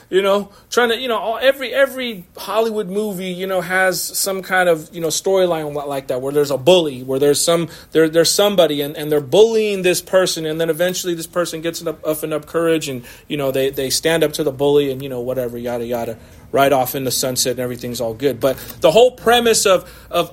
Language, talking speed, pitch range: English, 240 wpm, 155-230 Hz